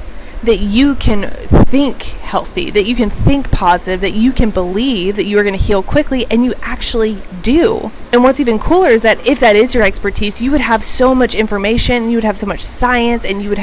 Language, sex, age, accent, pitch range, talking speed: English, female, 20-39, American, 195-235 Hz, 225 wpm